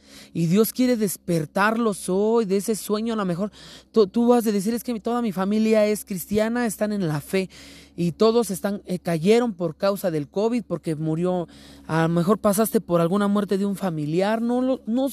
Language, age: Spanish, 30-49